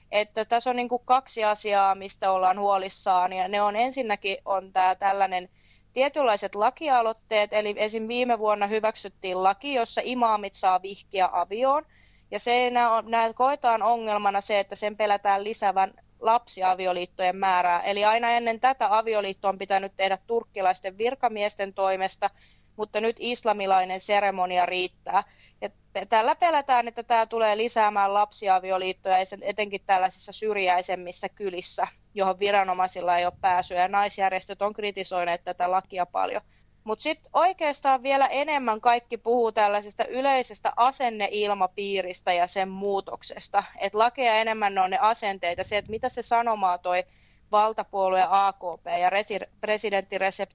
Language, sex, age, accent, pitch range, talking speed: Finnish, female, 20-39, native, 190-225 Hz, 135 wpm